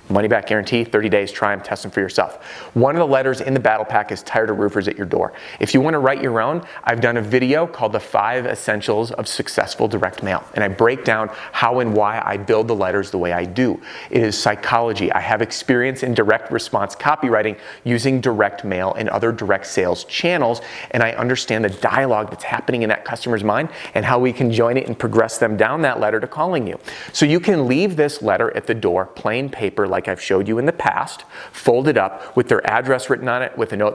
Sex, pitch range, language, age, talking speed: male, 105-130 Hz, English, 30-49, 235 wpm